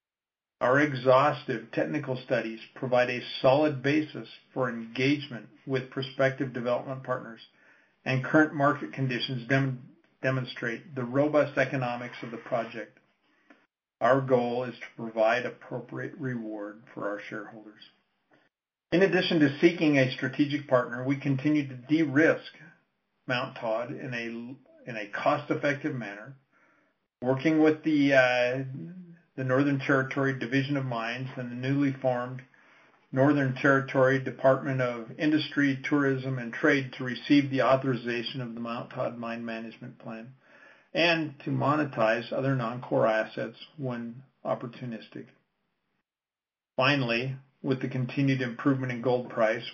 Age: 50-69